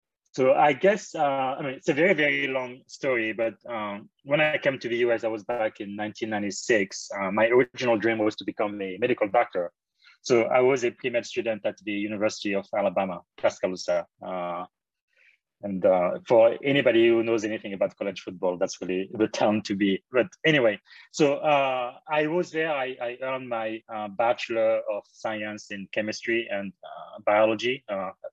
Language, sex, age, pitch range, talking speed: English, male, 30-49, 105-135 Hz, 180 wpm